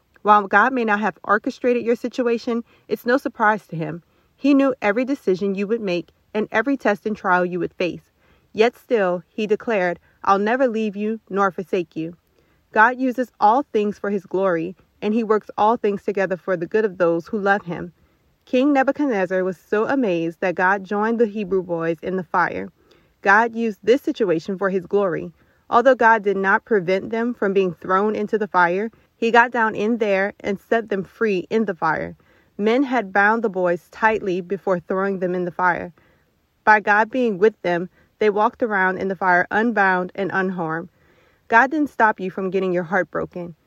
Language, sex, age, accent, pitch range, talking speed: English, female, 30-49, American, 185-230 Hz, 190 wpm